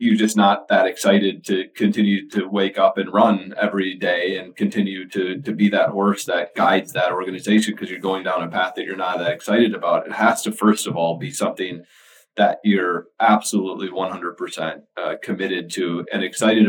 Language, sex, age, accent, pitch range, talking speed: English, male, 30-49, American, 95-110 Hz, 195 wpm